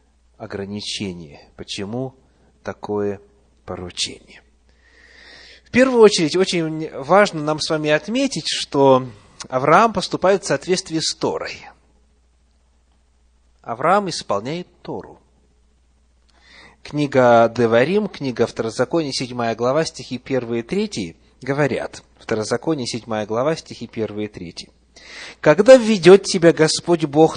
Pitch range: 110-170 Hz